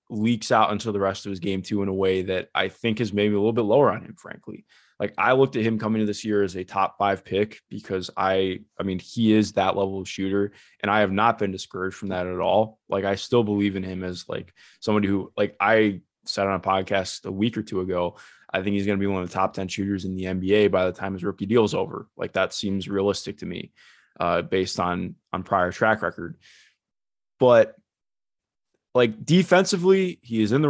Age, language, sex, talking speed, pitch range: 20-39, English, male, 240 wpm, 95-110 Hz